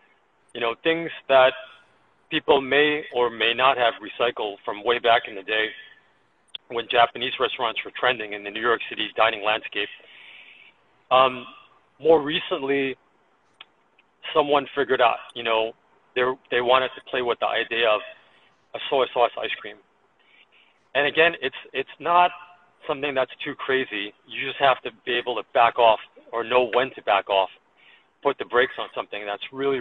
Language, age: English, 40-59